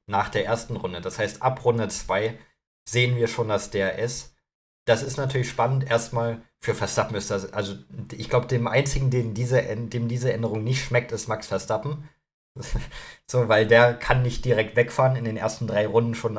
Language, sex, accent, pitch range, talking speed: German, male, German, 105-120 Hz, 190 wpm